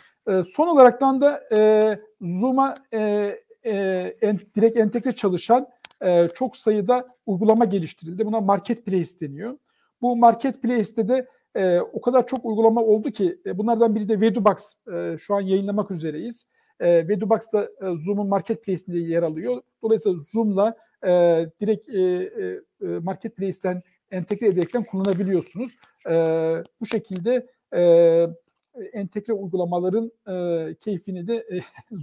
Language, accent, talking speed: Turkish, native, 125 wpm